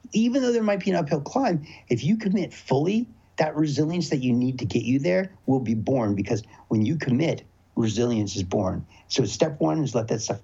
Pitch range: 145-190 Hz